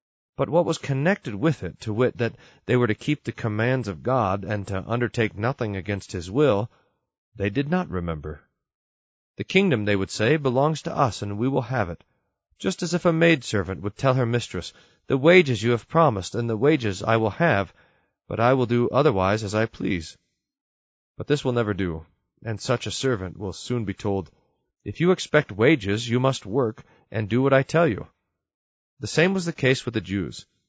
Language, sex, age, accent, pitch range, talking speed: English, male, 40-59, American, 100-135 Hz, 200 wpm